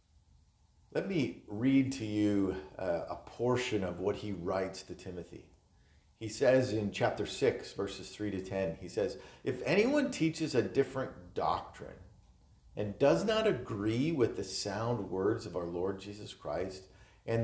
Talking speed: 155 wpm